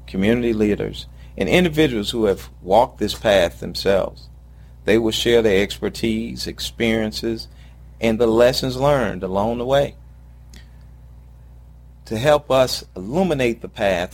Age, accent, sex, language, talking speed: 40-59, American, male, English, 125 wpm